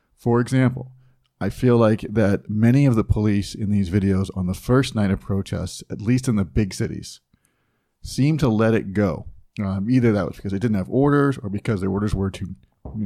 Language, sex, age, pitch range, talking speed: English, male, 40-59, 100-125 Hz, 210 wpm